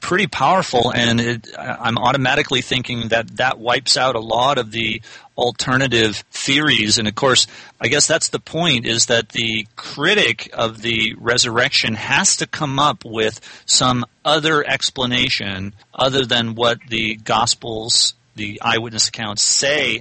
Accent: American